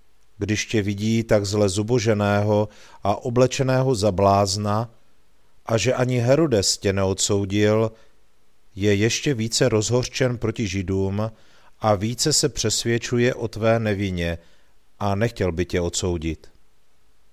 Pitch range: 95-115 Hz